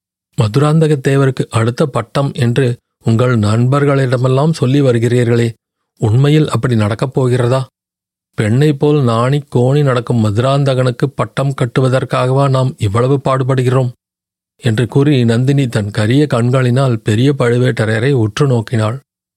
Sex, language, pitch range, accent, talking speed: male, Tamil, 115-140 Hz, native, 100 wpm